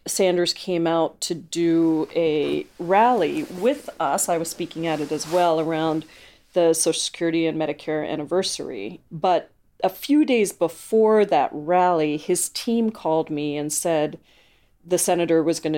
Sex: female